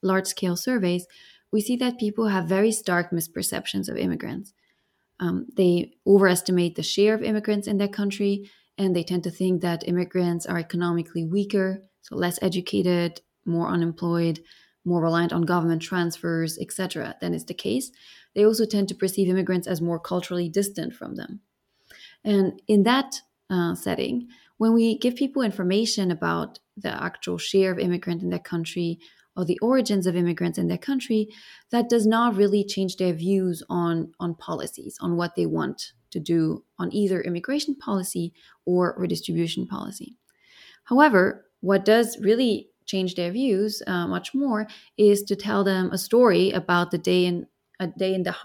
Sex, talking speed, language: female, 165 wpm, English